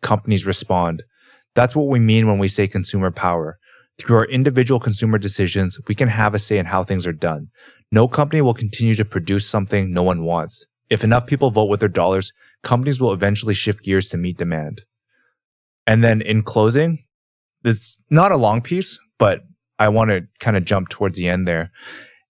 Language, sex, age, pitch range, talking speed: English, male, 20-39, 95-115 Hz, 190 wpm